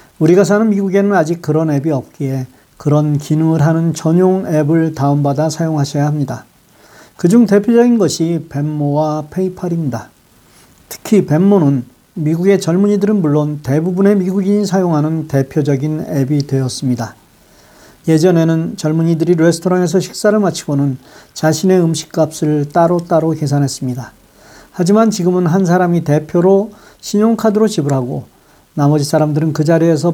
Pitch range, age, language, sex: 150-180 Hz, 40-59, Korean, male